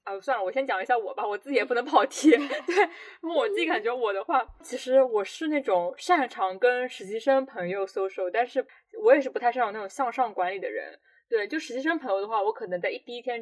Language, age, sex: Chinese, 10-29, female